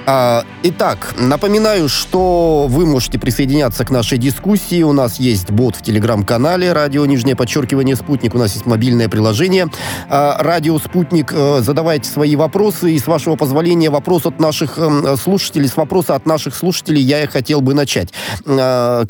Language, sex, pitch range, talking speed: Russian, male, 125-160 Hz, 150 wpm